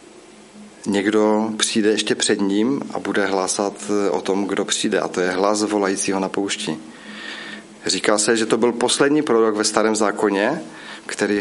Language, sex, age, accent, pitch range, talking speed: Czech, male, 40-59, native, 100-115 Hz, 160 wpm